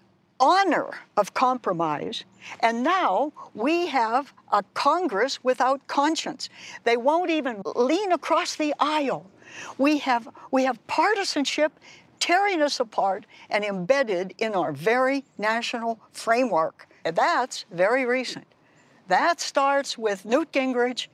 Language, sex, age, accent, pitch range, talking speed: English, female, 60-79, American, 205-290 Hz, 120 wpm